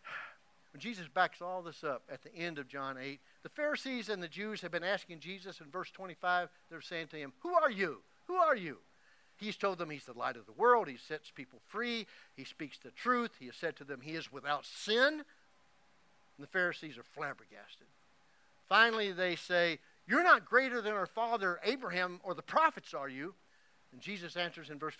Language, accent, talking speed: English, American, 205 wpm